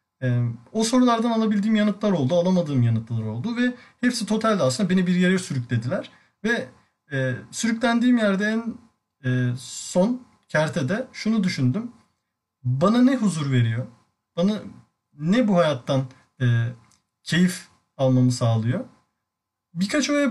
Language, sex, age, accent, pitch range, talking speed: Turkish, male, 40-59, native, 125-195 Hz, 120 wpm